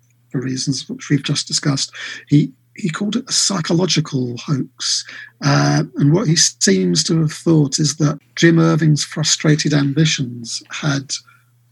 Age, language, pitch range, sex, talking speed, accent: 50-69, English, 135-160 Hz, male, 140 wpm, British